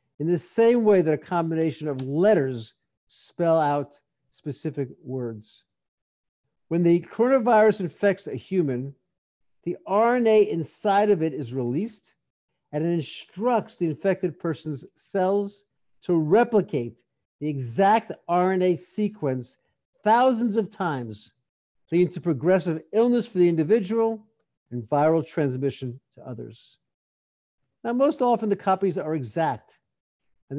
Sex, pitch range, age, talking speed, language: male, 135-200 Hz, 50-69, 120 wpm, English